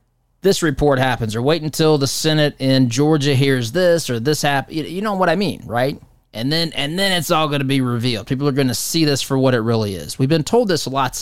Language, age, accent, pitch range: English, 20-39, American, 120-155 Hz